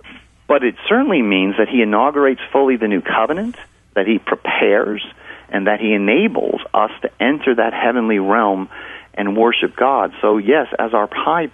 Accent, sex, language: American, male, English